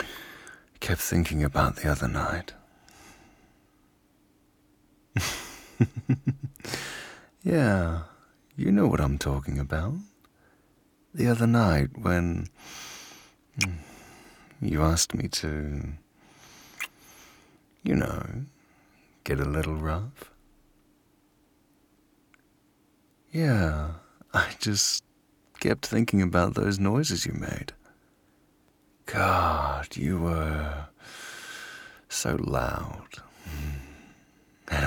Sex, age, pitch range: male, 40-59, 75-115 Hz